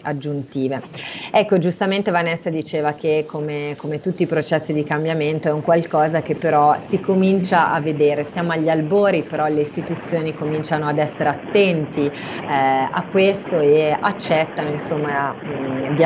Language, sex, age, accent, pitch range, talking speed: Italian, female, 30-49, native, 150-175 Hz, 145 wpm